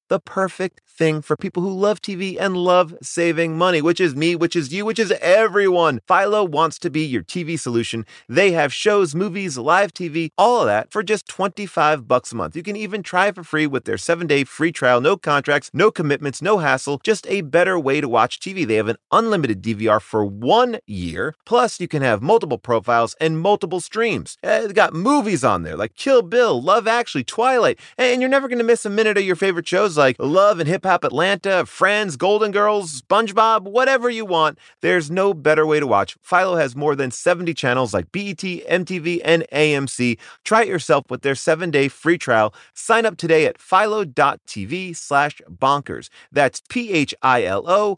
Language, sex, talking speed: English, male, 195 wpm